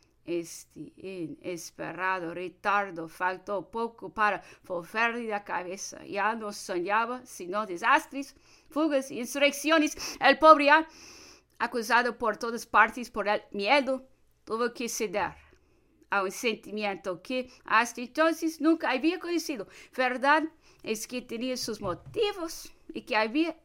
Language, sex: English, female